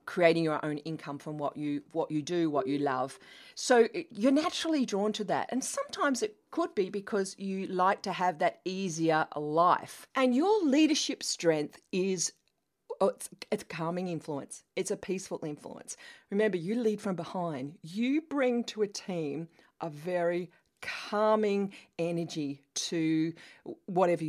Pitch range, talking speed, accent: 165-245 Hz, 150 wpm, Australian